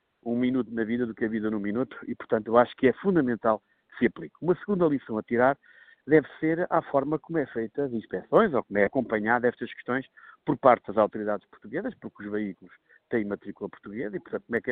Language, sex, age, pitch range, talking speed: Portuguese, male, 50-69, 105-135 Hz, 230 wpm